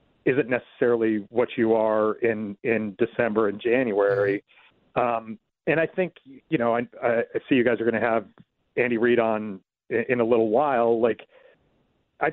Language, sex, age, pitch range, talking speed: English, male, 40-59, 110-135 Hz, 170 wpm